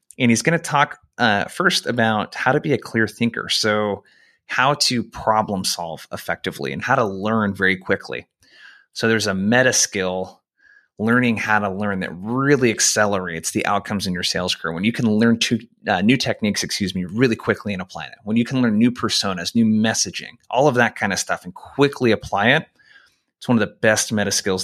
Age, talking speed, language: 30-49, 200 wpm, English